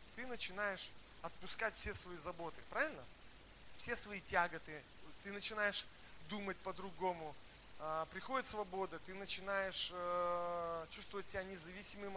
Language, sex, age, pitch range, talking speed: Russian, male, 20-39, 160-205 Hz, 105 wpm